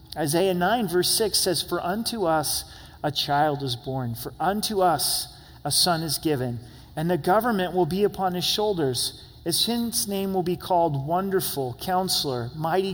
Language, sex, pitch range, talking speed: English, male, 145-190 Hz, 160 wpm